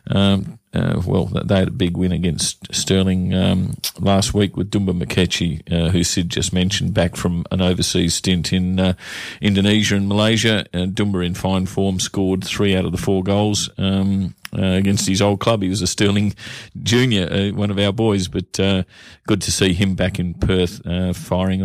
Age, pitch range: 40-59, 95-105 Hz